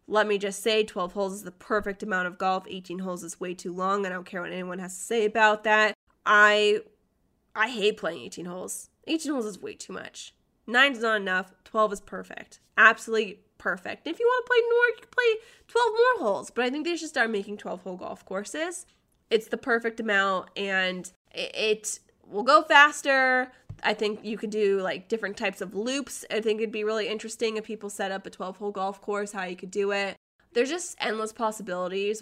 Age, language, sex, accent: 20-39, English, female, American